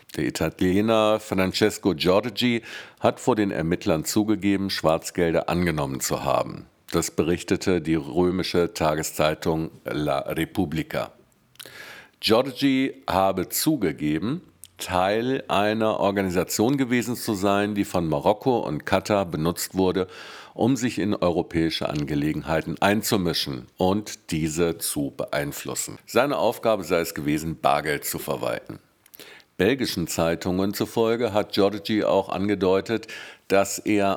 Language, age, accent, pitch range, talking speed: English, 50-69, German, 85-110 Hz, 110 wpm